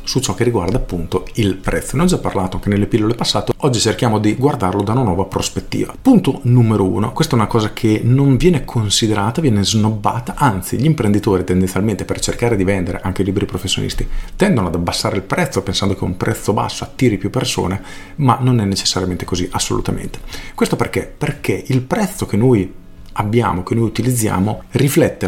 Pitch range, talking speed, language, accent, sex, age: 95-125 Hz, 185 wpm, Italian, native, male, 40-59